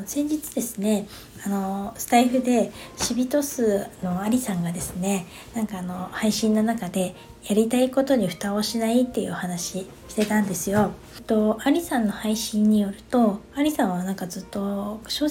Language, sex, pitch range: Japanese, female, 190-240 Hz